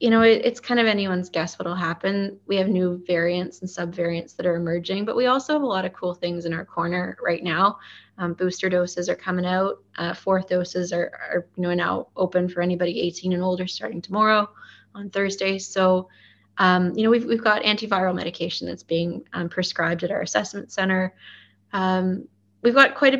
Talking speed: 205 wpm